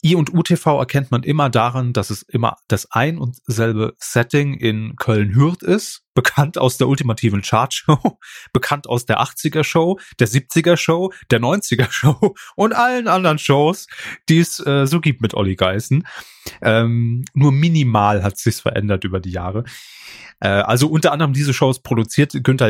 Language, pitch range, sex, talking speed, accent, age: German, 115-145 Hz, male, 170 wpm, German, 30-49